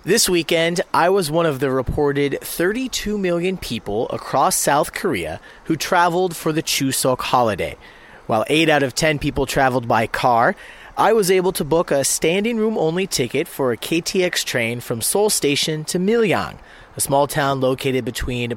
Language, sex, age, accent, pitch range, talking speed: English, male, 30-49, American, 130-175 Hz, 170 wpm